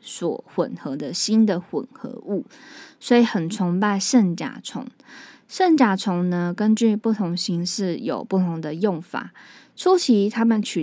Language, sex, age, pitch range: Chinese, female, 20-39, 180-230 Hz